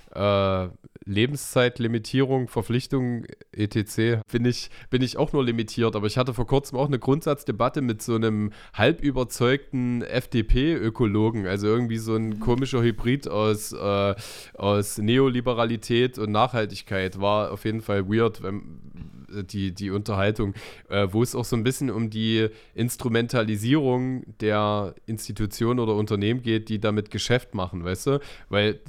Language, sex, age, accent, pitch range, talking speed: German, male, 20-39, German, 105-125 Hz, 135 wpm